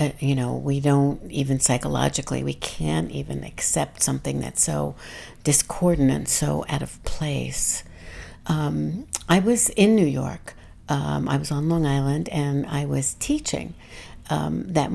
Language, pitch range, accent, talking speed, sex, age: English, 130-155 Hz, American, 150 wpm, female, 60-79